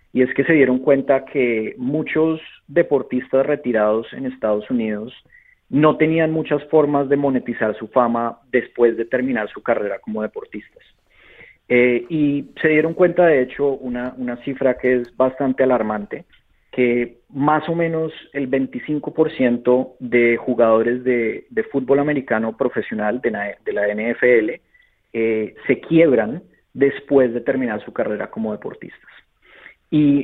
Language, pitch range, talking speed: Spanish, 120-155 Hz, 140 wpm